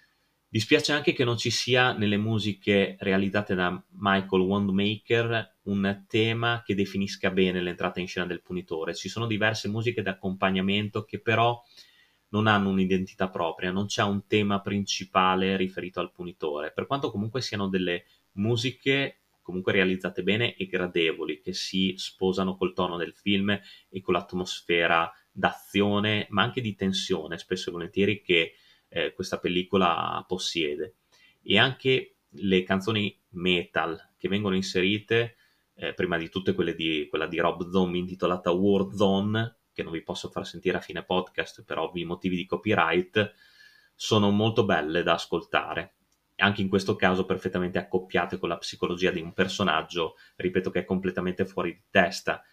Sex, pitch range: male, 90-110 Hz